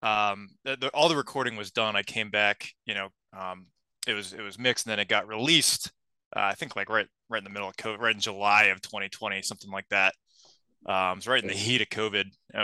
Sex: male